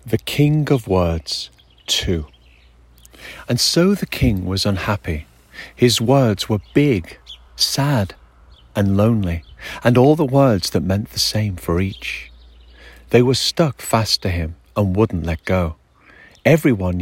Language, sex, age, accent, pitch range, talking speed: English, male, 40-59, British, 80-115 Hz, 140 wpm